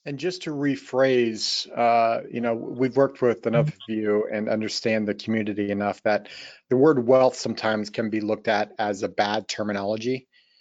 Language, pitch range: English, 115-140 Hz